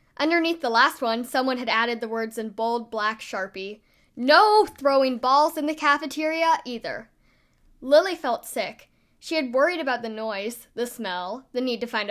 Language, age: English, 10-29